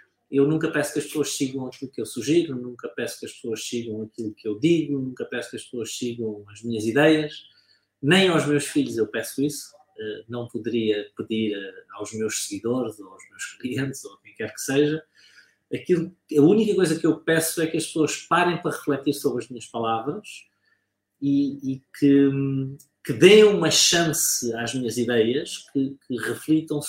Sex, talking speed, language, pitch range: male, 190 wpm, Portuguese, 130-165 Hz